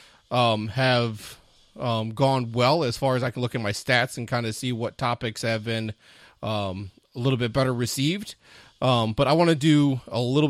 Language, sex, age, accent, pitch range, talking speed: English, male, 30-49, American, 115-135 Hz, 205 wpm